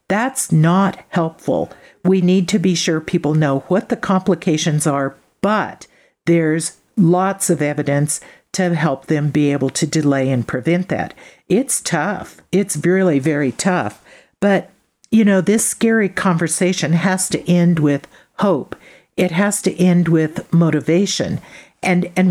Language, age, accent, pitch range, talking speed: English, 50-69, American, 150-185 Hz, 145 wpm